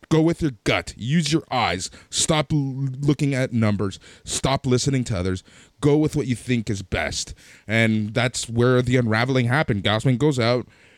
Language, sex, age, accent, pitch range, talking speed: English, male, 20-39, American, 100-140 Hz, 170 wpm